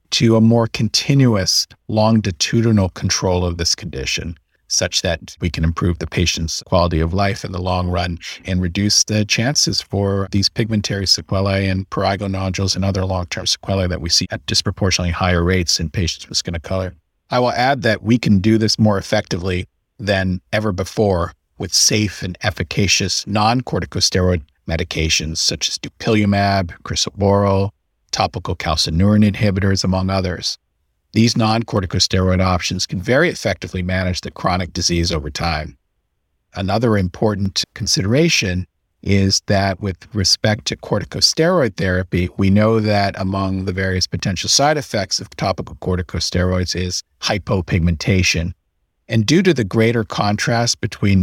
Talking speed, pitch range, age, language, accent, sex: 140 wpm, 90-110 Hz, 50-69, English, American, male